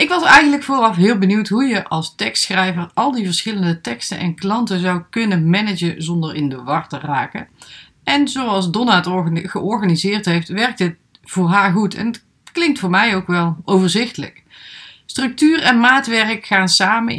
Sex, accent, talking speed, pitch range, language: female, Dutch, 170 wpm, 170-225 Hz, Dutch